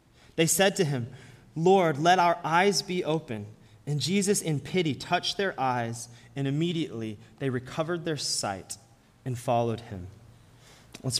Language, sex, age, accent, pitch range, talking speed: English, male, 30-49, American, 120-155 Hz, 145 wpm